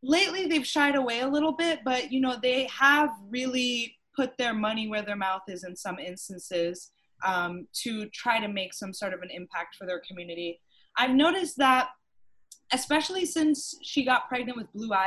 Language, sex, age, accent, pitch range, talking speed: English, female, 20-39, American, 205-275 Hz, 185 wpm